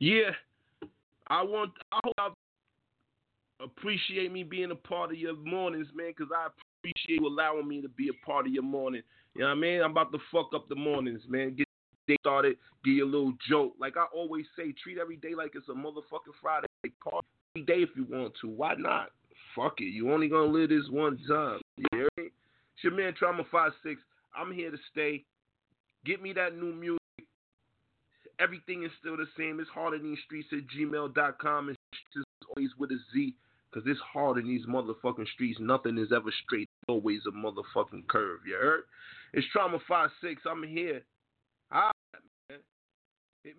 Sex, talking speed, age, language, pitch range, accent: male, 190 wpm, 30-49, English, 135-175 Hz, American